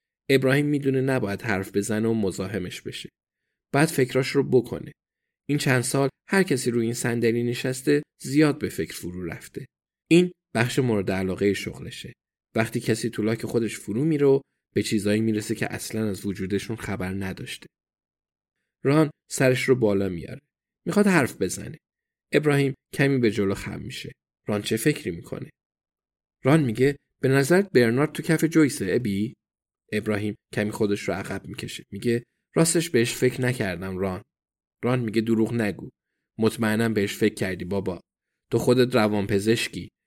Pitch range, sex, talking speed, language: 105-140 Hz, male, 140 wpm, Persian